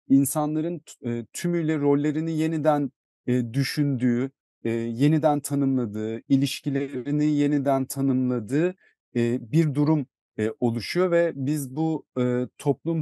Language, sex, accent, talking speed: Turkish, male, native, 80 wpm